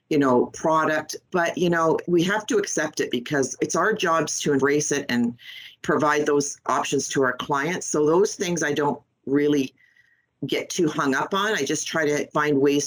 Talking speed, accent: 195 wpm, American